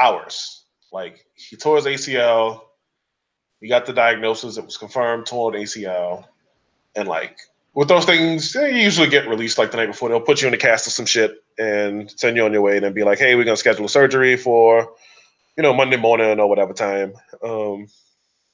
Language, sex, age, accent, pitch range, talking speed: English, male, 20-39, American, 110-155 Hz, 205 wpm